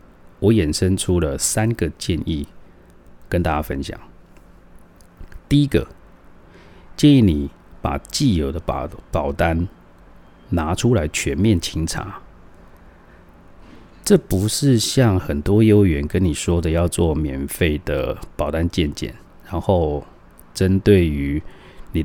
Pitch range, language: 80-100 Hz, Chinese